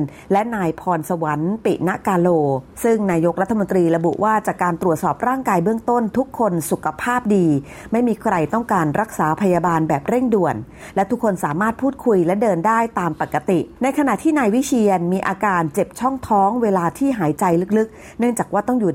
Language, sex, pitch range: Thai, female, 170-230 Hz